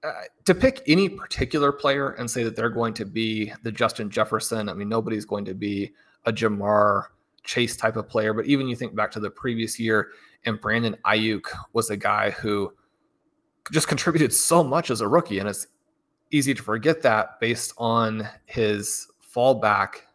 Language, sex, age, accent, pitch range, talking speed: English, male, 20-39, American, 110-130 Hz, 180 wpm